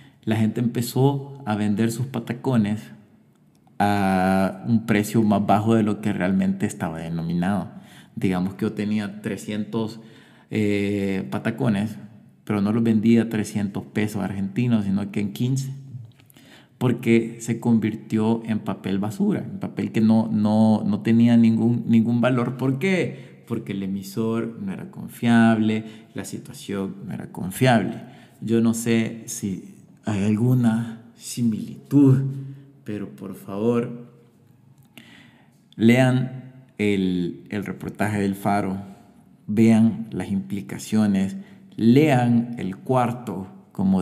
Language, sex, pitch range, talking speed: Spanish, male, 100-120 Hz, 120 wpm